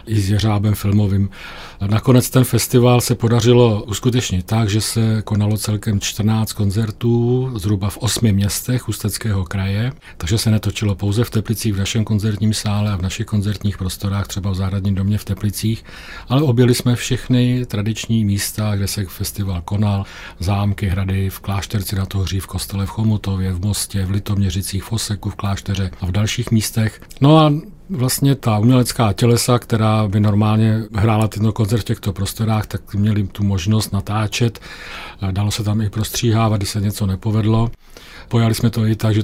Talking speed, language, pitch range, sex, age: 170 wpm, Czech, 100-115 Hz, male, 40-59